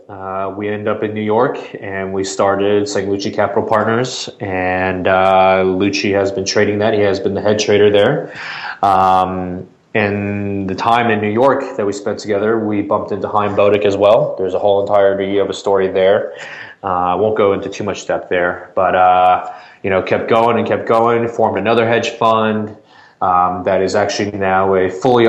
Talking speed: 190 wpm